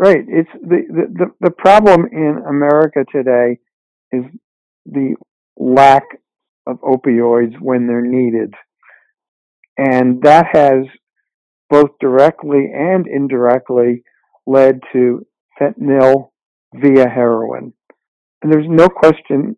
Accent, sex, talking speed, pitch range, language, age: American, male, 105 wpm, 120-145 Hz, English, 60-79